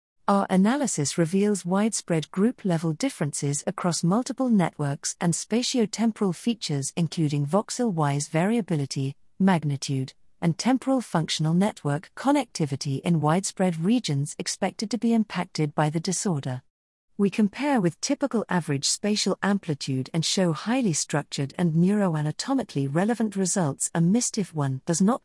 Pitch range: 155-210 Hz